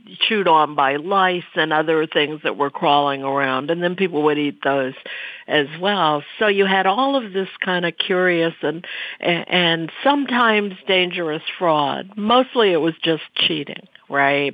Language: English